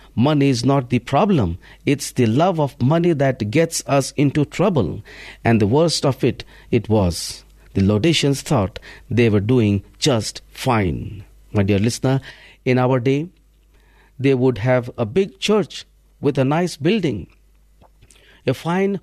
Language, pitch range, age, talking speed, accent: English, 105-145 Hz, 50-69, 150 wpm, Indian